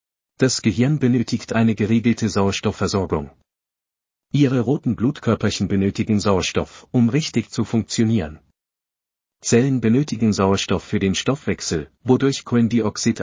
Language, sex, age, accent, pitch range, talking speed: German, male, 40-59, German, 100-120 Hz, 105 wpm